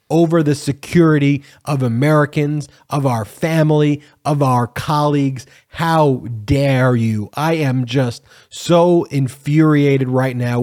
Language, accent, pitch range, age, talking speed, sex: English, American, 130-150 Hz, 30-49, 120 wpm, male